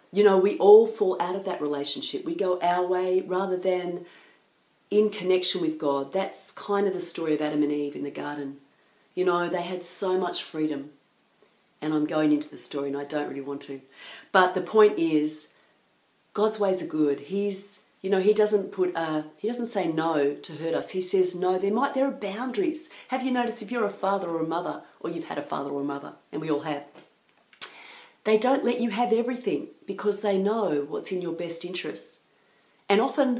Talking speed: 210 wpm